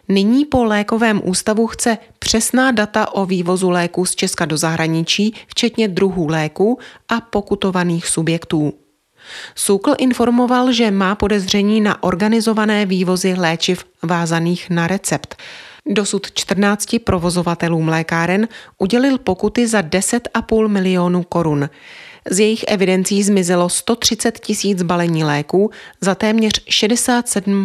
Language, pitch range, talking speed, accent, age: Czech, 170-220 Hz, 115 wpm, native, 30-49